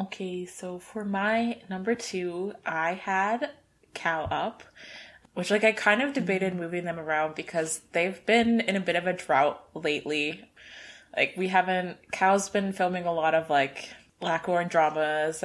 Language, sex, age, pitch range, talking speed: English, female, 20-39, 160-195 Hz, 165 wpm